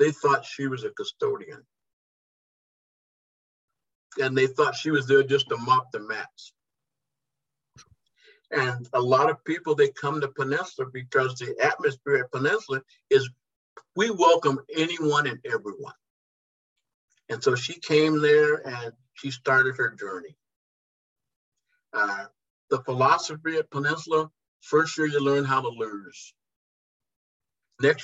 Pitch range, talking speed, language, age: 135-165 Hz, 130 wpm, English, 50-69